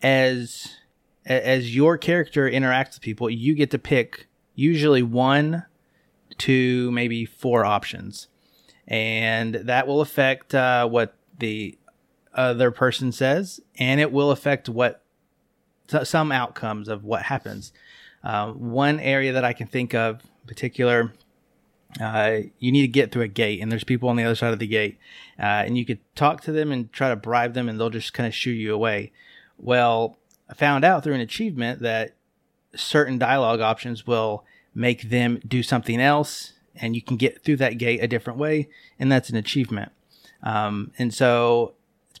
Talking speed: 170 wpm